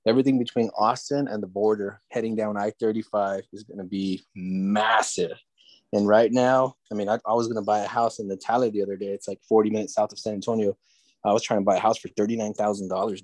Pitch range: 95-110 Hz